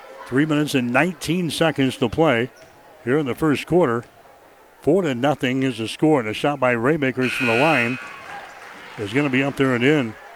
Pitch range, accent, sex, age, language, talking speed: 125-150 Hz, American, male, 60-79, English, 195 wpm